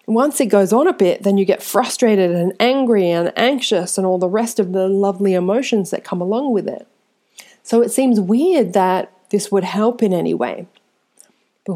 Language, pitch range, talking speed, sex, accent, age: English, 185-210 Hz, 200 wpm, female, Australian, 30-49